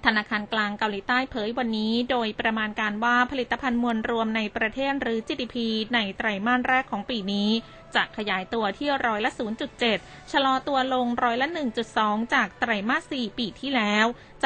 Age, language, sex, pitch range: 20-39, Thai, female, 215-255 Hz